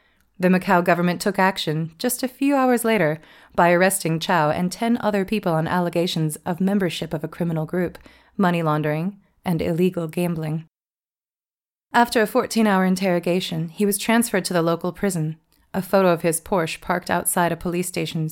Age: 30-49